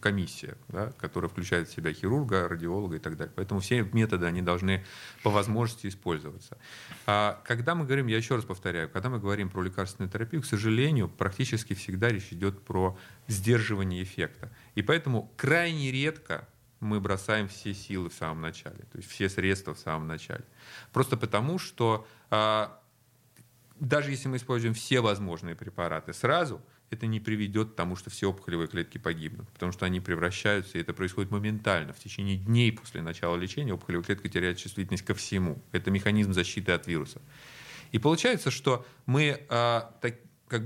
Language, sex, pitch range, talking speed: Russian, male, 95-120 Hz, 165 wpm